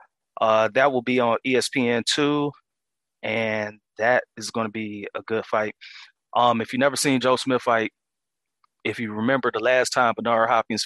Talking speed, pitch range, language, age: 170 wpm, 110-125 Hz, English, 20-39